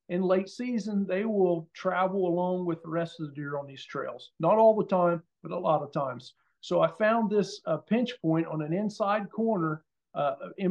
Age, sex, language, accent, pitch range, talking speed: 50-69, male, English, American, 160-205 Hz, 215 wpm